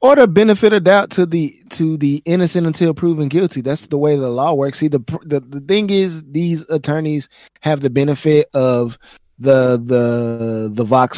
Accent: American